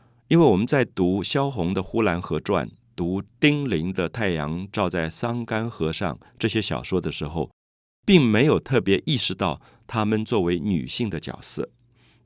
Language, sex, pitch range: Chinese, male, 85-120 Hz